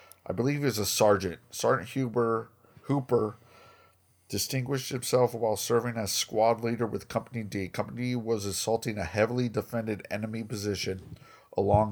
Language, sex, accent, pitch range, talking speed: English, male, American, 105-125 Hz, 145 wpm